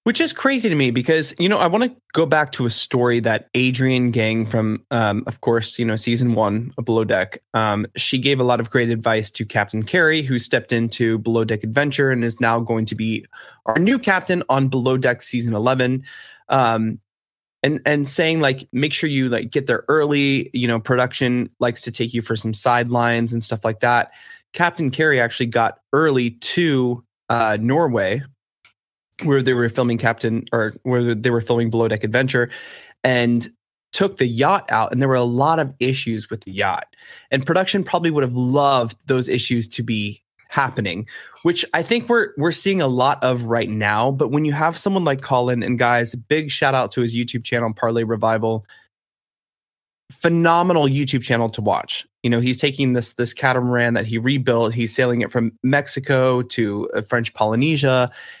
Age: 20-39